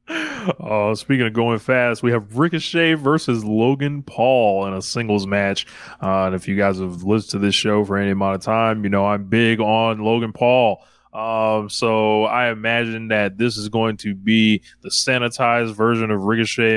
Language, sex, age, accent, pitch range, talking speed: English, male, 20-39, American, 105-125 Hz, 185 wpm